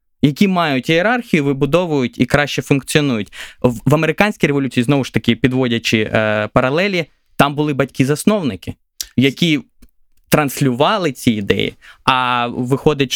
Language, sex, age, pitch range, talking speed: Ukrainian, male, 20-39, 125-160 Hz, 115 wpm